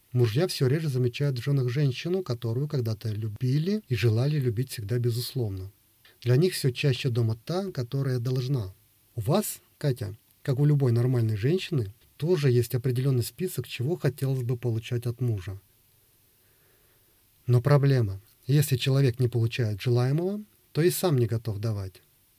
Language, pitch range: Russian, 115-140 Hz